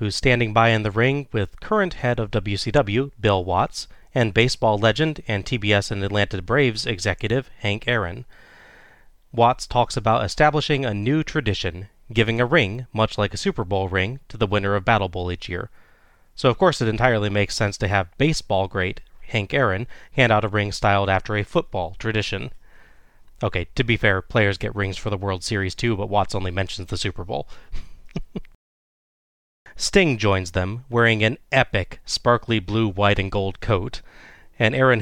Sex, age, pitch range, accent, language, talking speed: male, 30-49, 95-120 Hz, American, English, 175 wpm